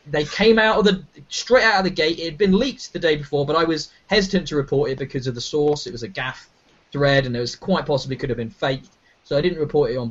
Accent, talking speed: British, 285 wpm